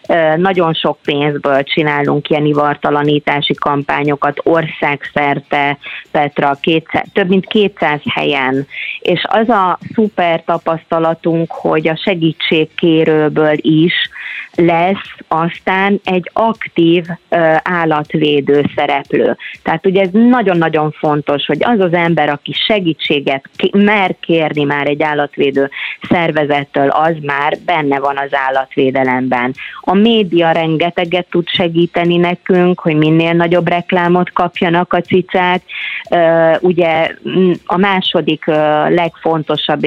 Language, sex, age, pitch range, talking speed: Hungarian, female, 30-49, 145-175 Hz, 105 wpm